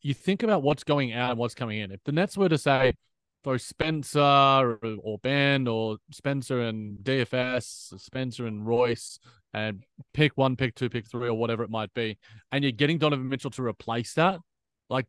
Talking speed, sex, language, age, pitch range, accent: 195 wpm, male, English, 20-39, 115-135 Hz, Australian